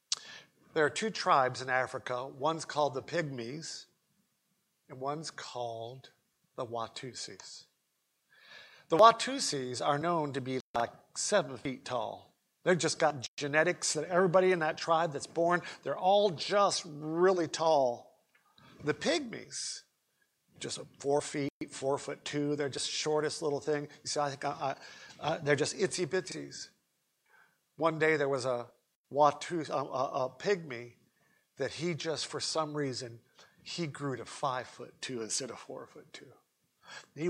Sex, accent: male, American